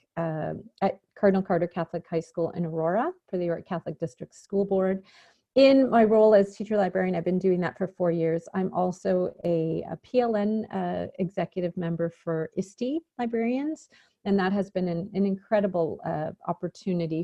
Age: 40-59